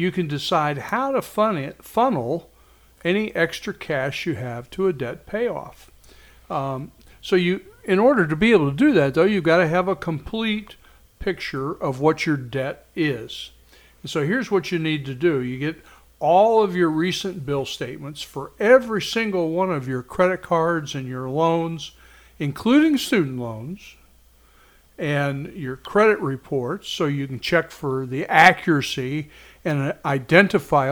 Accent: American